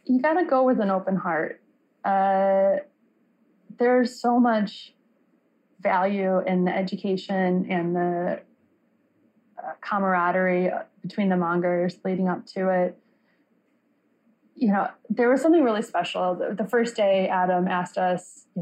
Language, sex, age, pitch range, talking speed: English, female, 20-39, 185-240 Hz, 135 wpm